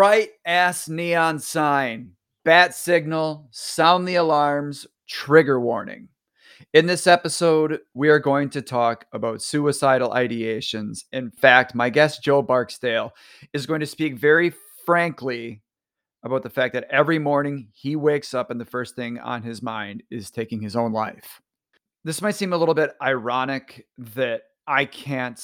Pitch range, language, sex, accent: 115-150 Hz, English, male, American